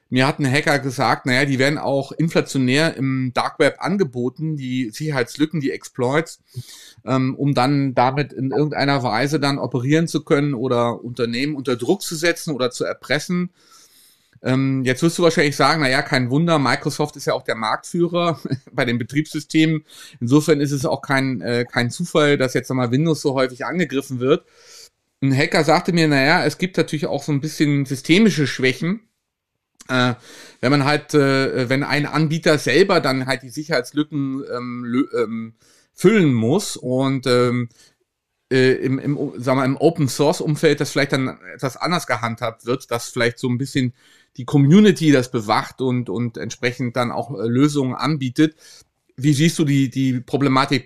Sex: male